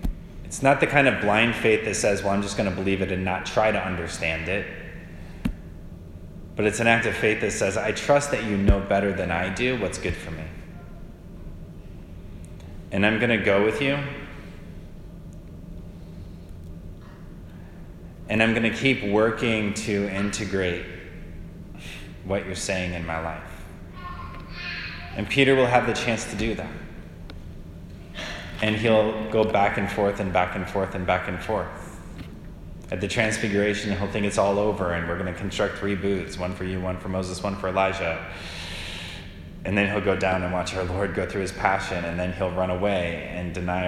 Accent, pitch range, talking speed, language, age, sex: American, 85-100 Hz, 180 wpm, English, 20-39, male